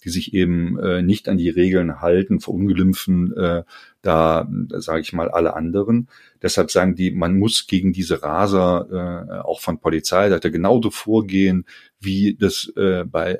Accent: German